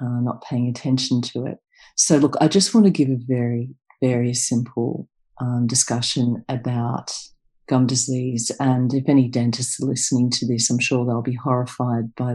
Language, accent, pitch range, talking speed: English, Australian, 125-140 Hz, 175 wpm